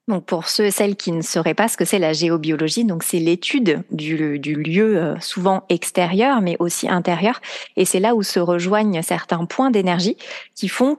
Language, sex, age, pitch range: French, female, 30-49, 165-205 Hz